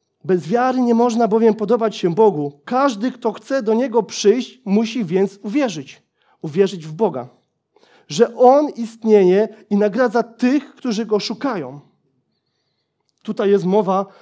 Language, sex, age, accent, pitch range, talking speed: Polish, male, 30-49, native, 200-255 Hz, 135 wpm